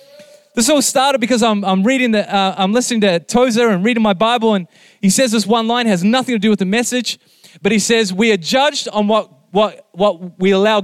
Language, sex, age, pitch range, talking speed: English, male, 20-39, 195-240 Hz, 235 wpm